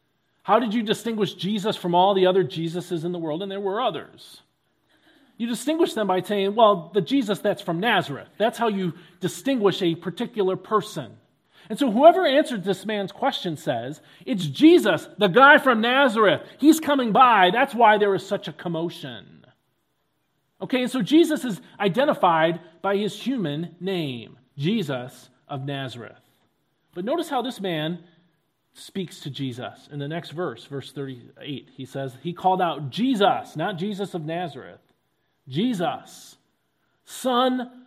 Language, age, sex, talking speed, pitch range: English, 40-59, male, 155 wpm, 145-215 Hz